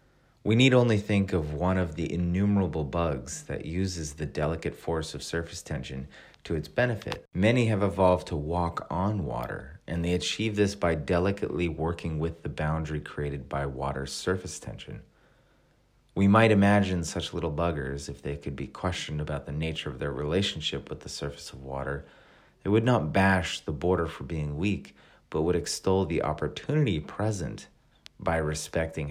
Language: English